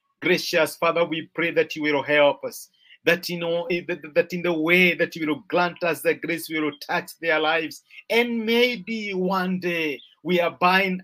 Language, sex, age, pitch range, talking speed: English, male, 50-69, 160-205 Hz, 195 wpm